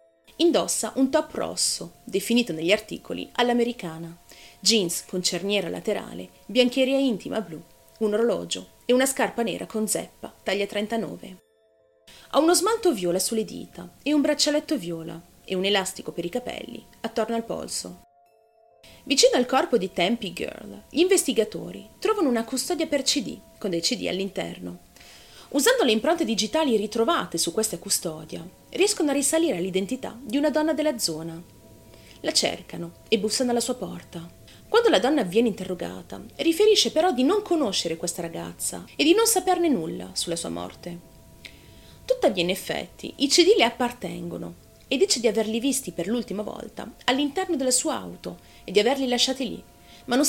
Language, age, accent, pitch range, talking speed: Italian, 30-49, native, 175-275 Hz, 155 wpm